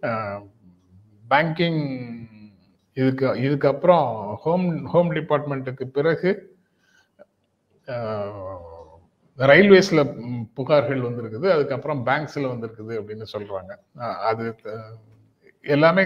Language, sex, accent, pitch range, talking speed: Tamil, male, native, 115-145 Hz, 65 wpm